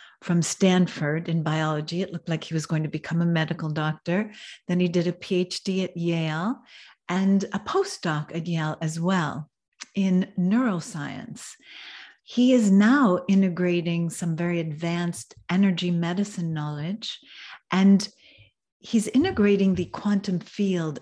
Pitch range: 165-205 Hz